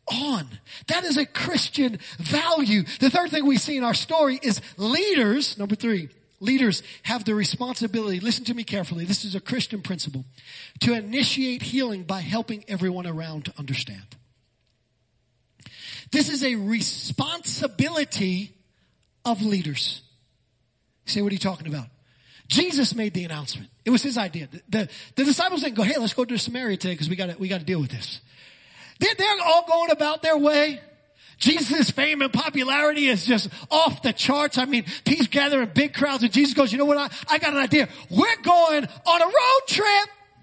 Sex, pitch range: male, 170-270 Hz